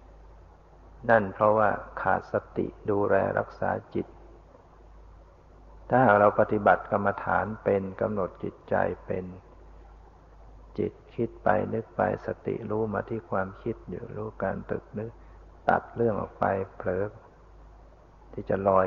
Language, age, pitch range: Thai, 60-79, 90-110 Hz